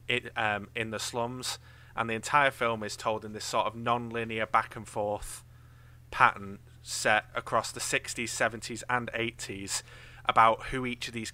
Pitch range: 110-120 Hz